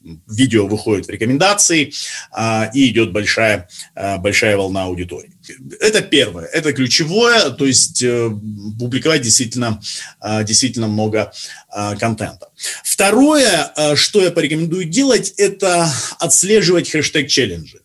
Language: Russian